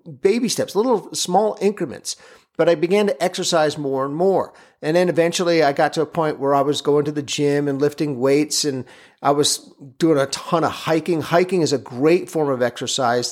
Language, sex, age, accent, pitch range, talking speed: English, male, 50-69, American, 145-190 Hz, 205 wpm